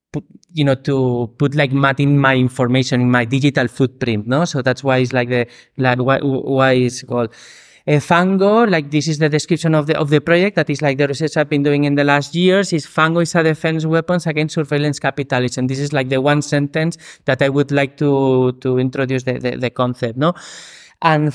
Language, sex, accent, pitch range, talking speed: German, male, Spanish, 140-165 Hz, 215 wpm